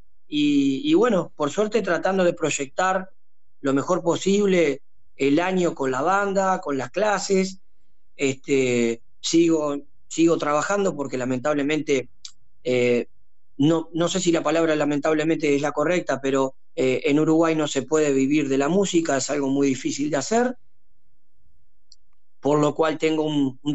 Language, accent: Spanish, Argentinian